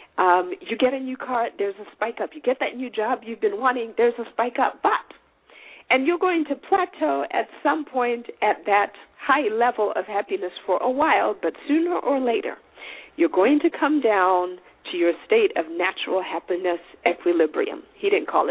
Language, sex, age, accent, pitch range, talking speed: English, female, 50-69, American, 195-320 Hz, 190 wpm